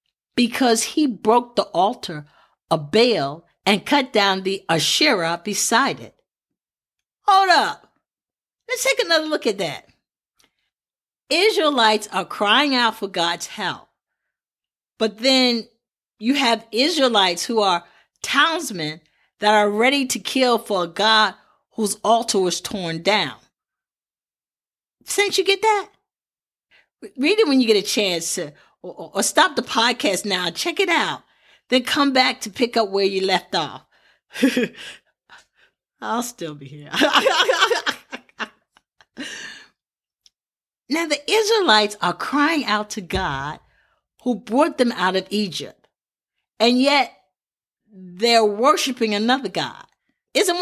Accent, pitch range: American, 205-270 Hz